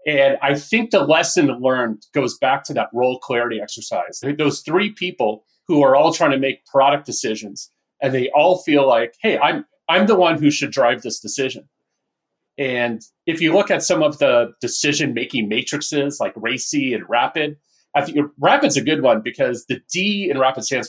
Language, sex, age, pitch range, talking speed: English, male, 30-49, 125-165 Hz, 190 wpm